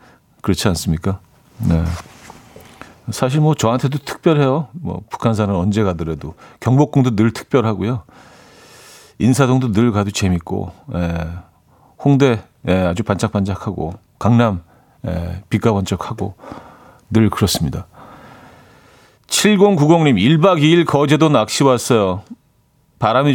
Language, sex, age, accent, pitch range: Korean, male, 40-59, native, 95-140 Hz